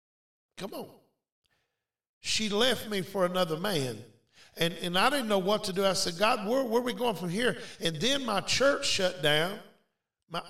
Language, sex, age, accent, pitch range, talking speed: English, male, 50-69, American, 145-200 Hz, 190 wpm